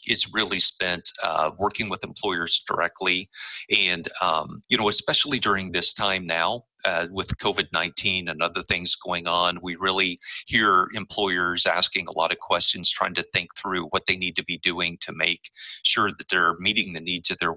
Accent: American